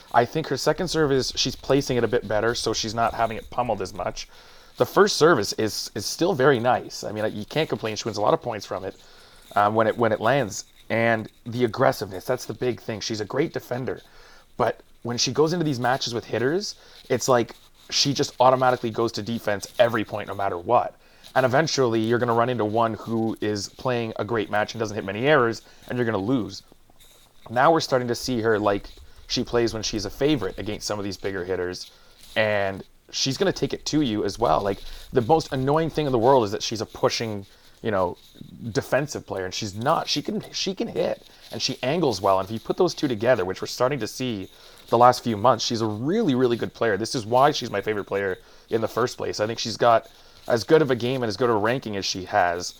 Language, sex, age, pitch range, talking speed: English, male, 30-49, 105-130 Hz, 240 wpm